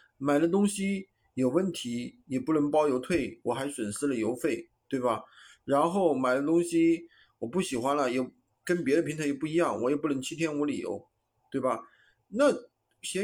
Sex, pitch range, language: male, 130-200 Hz, Chinese